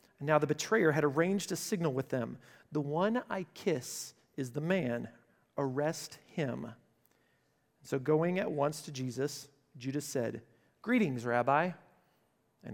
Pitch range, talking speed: 145-185 Hz, 140 wpm